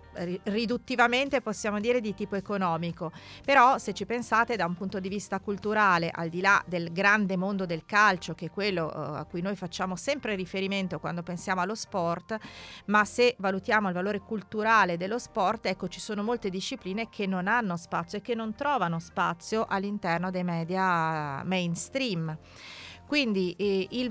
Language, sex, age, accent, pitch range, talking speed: Italian, female, 40-59, native, 175-220 Hz, 165 wpm